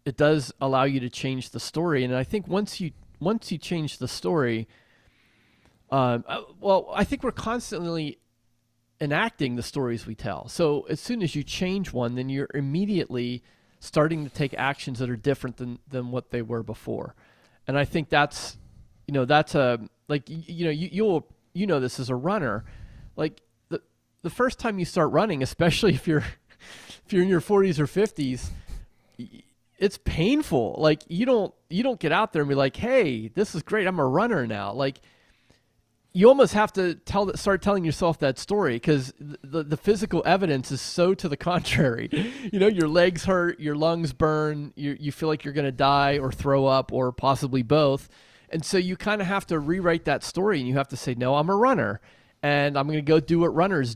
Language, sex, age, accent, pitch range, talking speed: English, male, 30-49, American, 130-175 Hz, 200 wpm